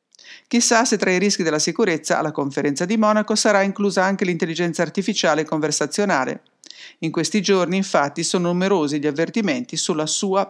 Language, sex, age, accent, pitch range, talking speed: English, female, 50-69, Italian, 160-200 Hz, 155 wpm